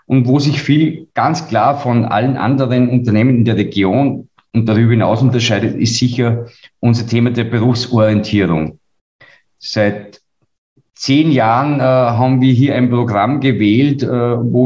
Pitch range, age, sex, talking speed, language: 110-125 Hz, 50-69, male, 145 wpm, German